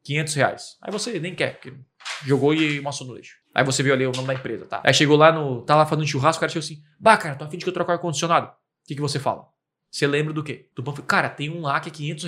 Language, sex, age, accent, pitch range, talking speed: Portuguese, male, 20-39, Brazilian, 135-160 Hz, 300 wpm